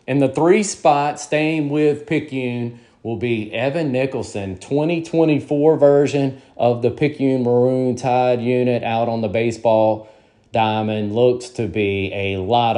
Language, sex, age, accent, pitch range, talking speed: English, male, 30-49, American, 110-135 Hz, 130 wpm